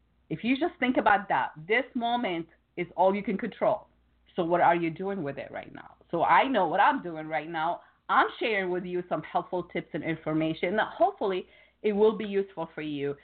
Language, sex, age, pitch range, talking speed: English, female, 50-69, 160-220 Hz, 215 wpm